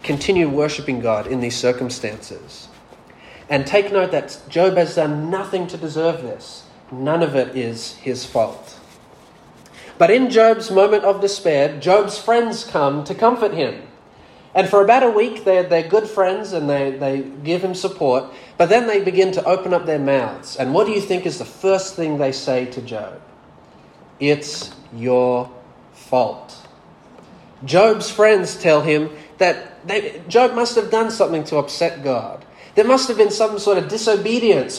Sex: male